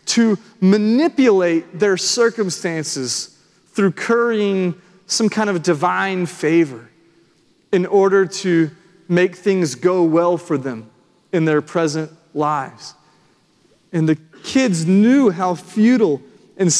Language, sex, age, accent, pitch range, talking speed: English, male, 30-49, American, 170-210 Hz, 110 wpm